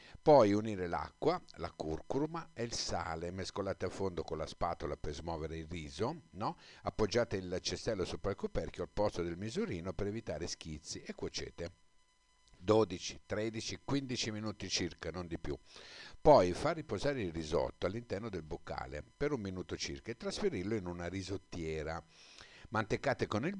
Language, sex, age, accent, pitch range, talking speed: Italian, male, 50-69, native, 85-120 Hz, 160 wpm